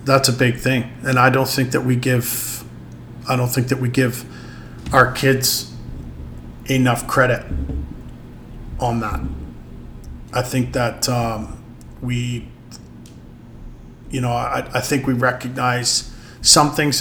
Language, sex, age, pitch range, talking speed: English, male, 40-59, 115-130 Hz, 130 wpm